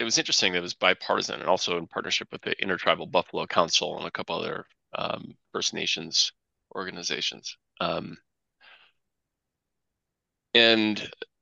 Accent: American